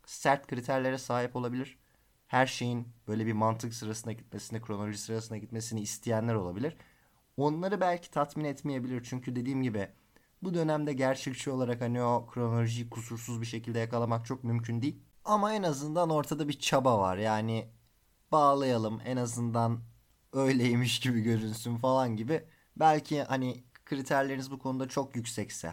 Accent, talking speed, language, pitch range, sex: native, 140 wpm, Turkish, 115-140 Hz, male